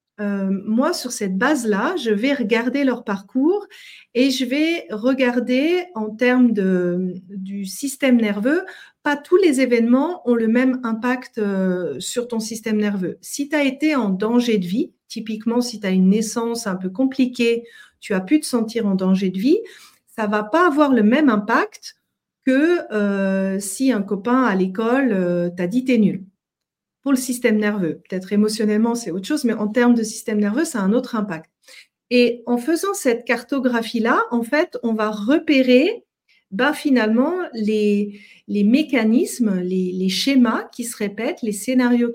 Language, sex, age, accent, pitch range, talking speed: French, female, 40-59, French, 205-260 Hz, 170 wpm